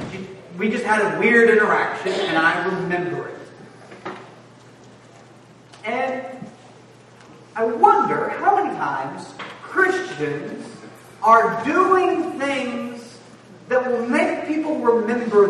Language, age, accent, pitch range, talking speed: English, 40-59, American, 165-235 Hz, 95 wpm